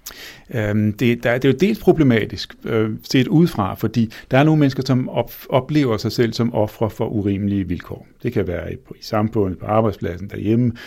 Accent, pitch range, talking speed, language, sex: native, 95-115 Hz, 205 wpm, Danish, male